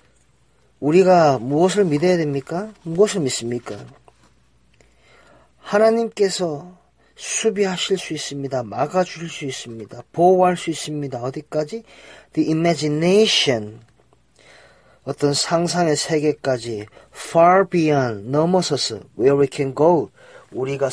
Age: 40-59